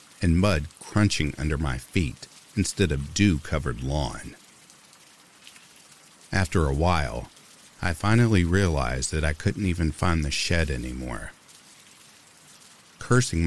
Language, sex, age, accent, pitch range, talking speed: English, male, 50-69, American, 70-95 Hz, 110 wpm